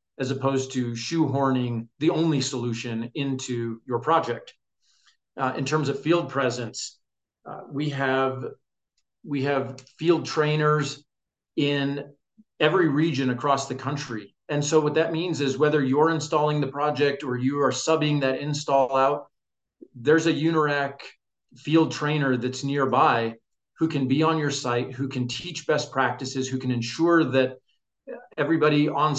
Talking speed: 145 wpm